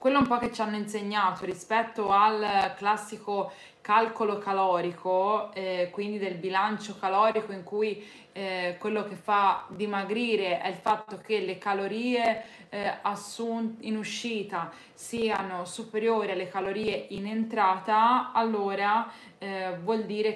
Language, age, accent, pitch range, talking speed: Italian, 20-39, native, 195-230 Hz, 125 wpm